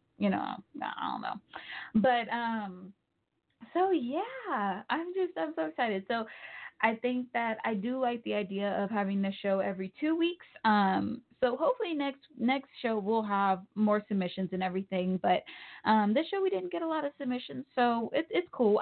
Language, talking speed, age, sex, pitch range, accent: English, 180 wpm, 10-29, female, 195-245 Hz, American